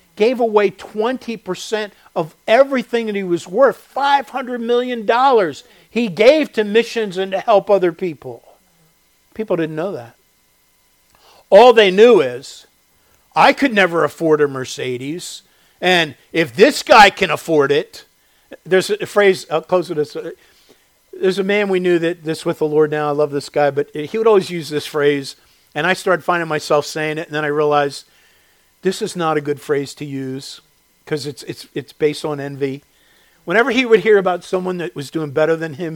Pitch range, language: 155-235 Hz, English